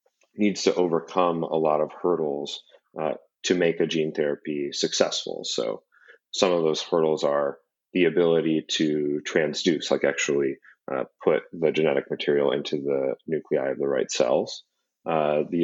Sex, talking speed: male, 155 wpm